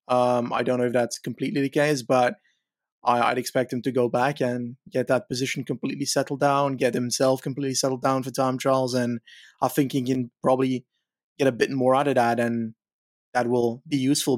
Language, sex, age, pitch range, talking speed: English, male, 20-39, 125-145 Hz, 205 wpm